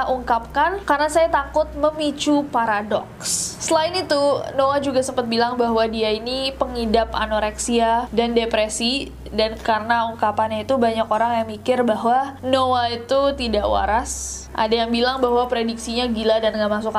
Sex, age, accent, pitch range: female, 20-39, native, 230-275 Hz